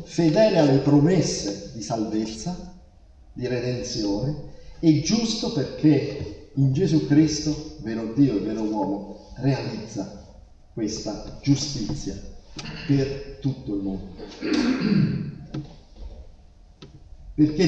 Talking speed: 90 wpm